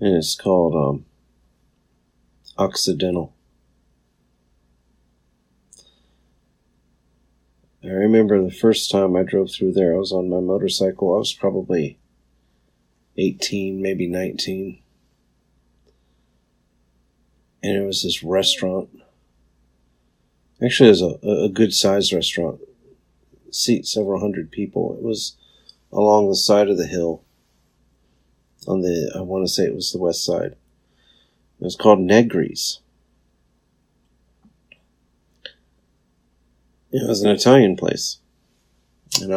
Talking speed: 105 wpm